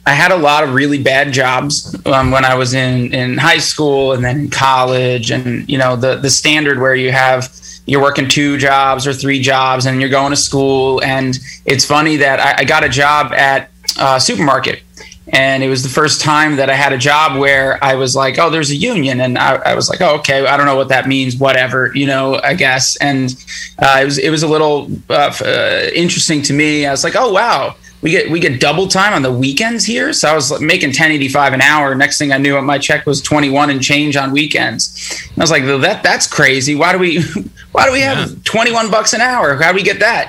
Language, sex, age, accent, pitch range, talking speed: English, male, 20-39, American, 130-150 Hz, 240 wpm